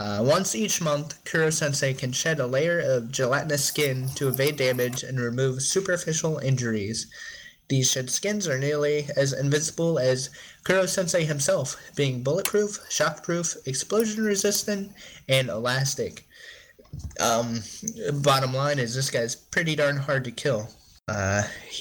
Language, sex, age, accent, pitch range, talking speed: English, male, 20-39, American, 120-150 Hz, 130 wpm